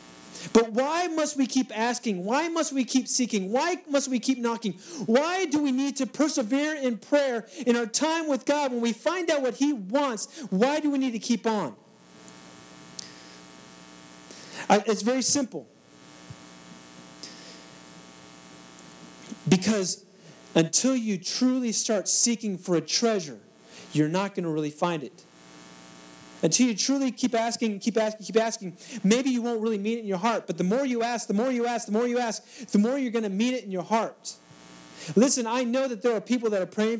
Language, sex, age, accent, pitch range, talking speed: English, male, 40-59, American, 170-250 Hz, 185 wpm